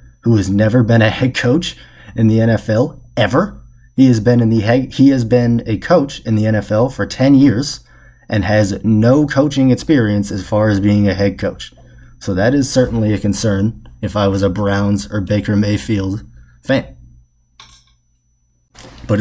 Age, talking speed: 20-39, 175 wpm